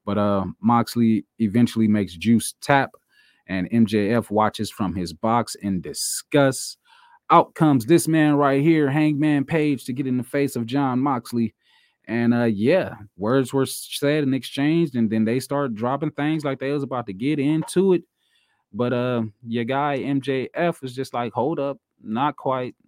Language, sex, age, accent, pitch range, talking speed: English, male, 20-39, American, 105-140 Hz, 170 wpm